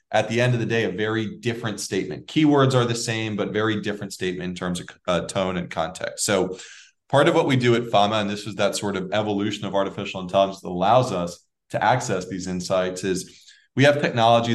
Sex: male